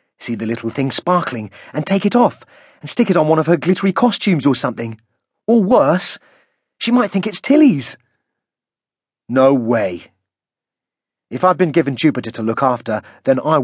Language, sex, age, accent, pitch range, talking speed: English, male, 30-49, British, 110-170 Hz, 170 wpm